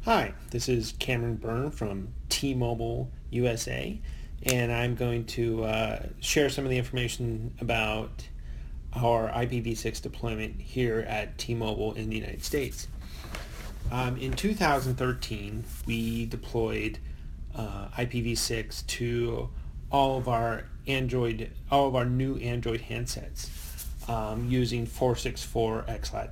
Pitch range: 110-130 Hz